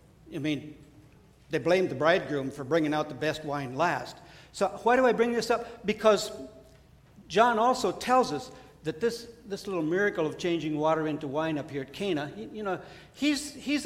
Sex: male